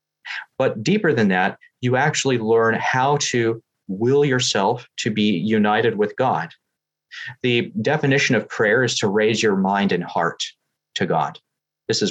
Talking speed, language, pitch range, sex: 155 wpm, English, 110-140 Hz, male